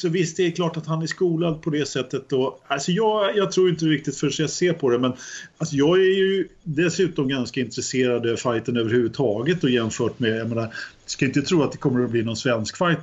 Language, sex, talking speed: Swedish, male, 235 wpm